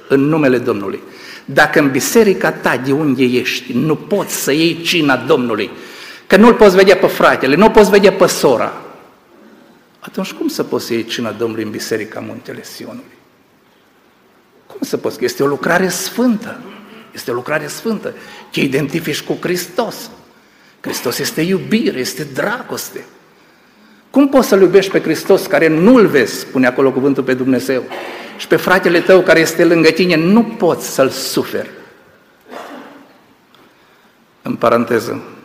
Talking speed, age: 145 wpm, 50-69